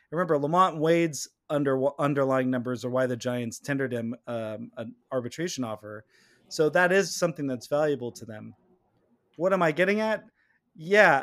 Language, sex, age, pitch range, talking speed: English, male, 30-49, 130-170 Hz, 160 wpm